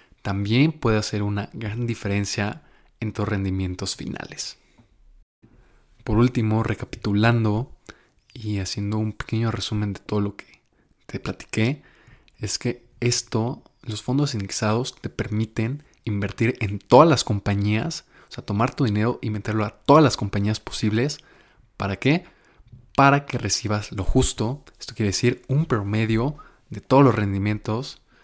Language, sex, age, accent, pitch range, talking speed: Spanish, male, 20-39, Mexican, 105-125 Hz, 140 wpm